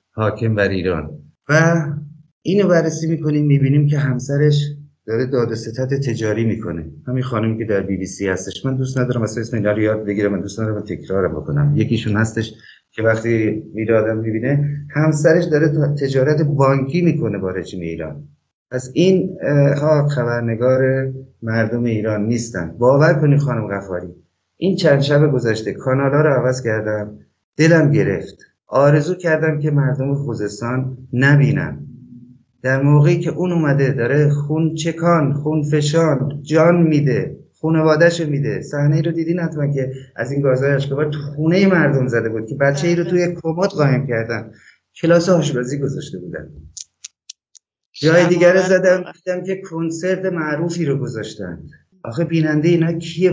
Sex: male